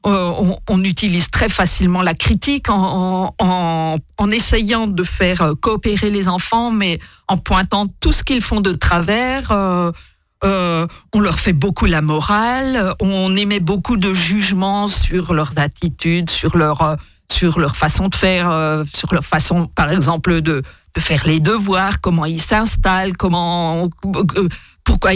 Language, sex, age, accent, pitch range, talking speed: French, female, 50-69, French, 165-195 Hz, 155 wpm